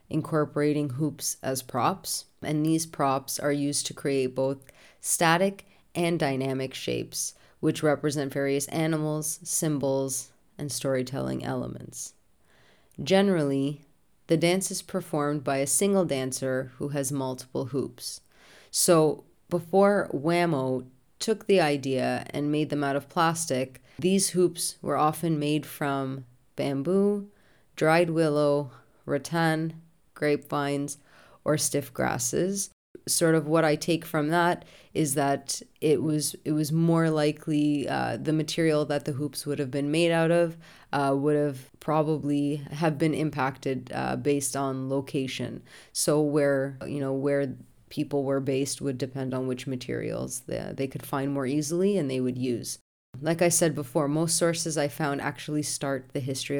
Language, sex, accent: English, female, American